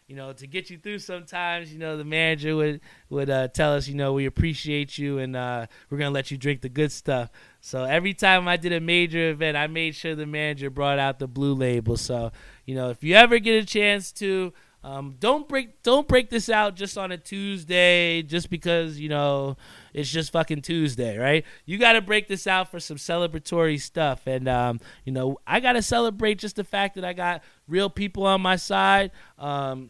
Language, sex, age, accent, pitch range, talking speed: English, male, 20-39, American, 135-180 Hz, 220 wpm